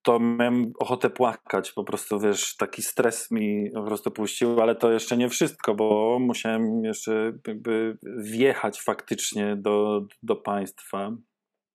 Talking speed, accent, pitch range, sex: 140 wpm, native, 110-130 Hz, male